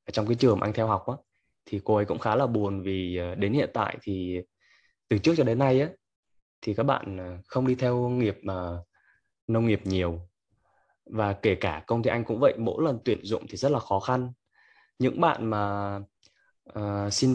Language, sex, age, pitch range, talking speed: Vietnamese, male, 20-39, 95-130 Hz, 205 wpm